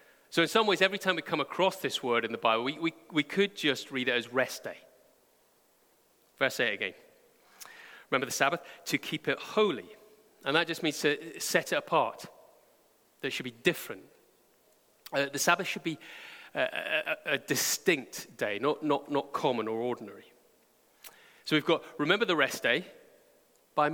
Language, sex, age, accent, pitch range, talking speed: English, male, 30-49, British, 135-215 Hz, 180 wpm